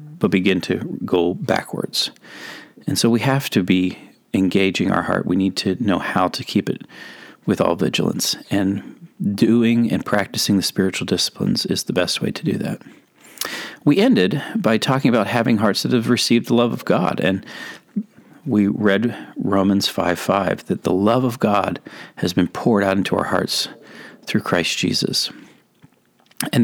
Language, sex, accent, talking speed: English, male, American, 165 wpm